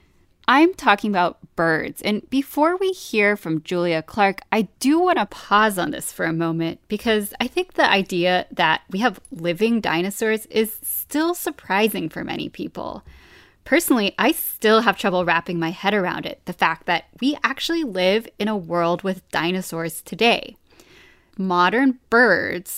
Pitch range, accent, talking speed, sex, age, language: 180-255 Hz, American, 160 wpm, female, 20-39, English